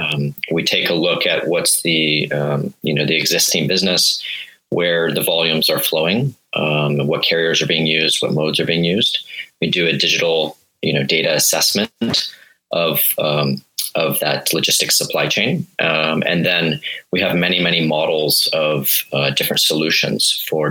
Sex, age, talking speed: male, 30-49, 170 wpm